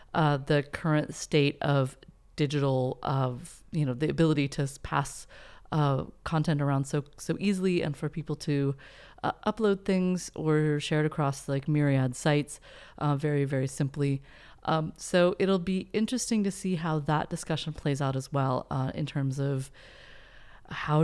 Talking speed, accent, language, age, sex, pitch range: 160 wpm, American, English, 30-49, female, 140-165 Hz